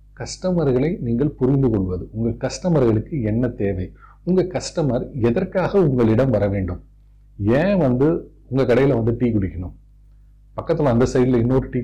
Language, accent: Tamil, native